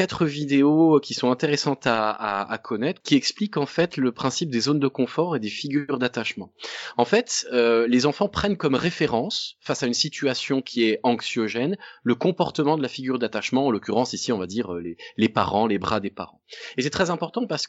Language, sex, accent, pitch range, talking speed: French, male, French, 120-165 Hz, 205 wpm